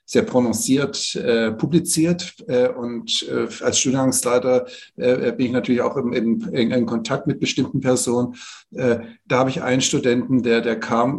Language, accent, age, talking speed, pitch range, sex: German, German, 50-69, 155 wpm, 120-140 Hz, male